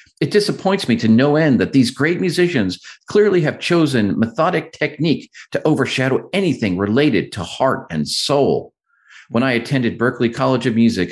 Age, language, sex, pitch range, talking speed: 50-69, English, male, 110-150 Hz, 160 wpm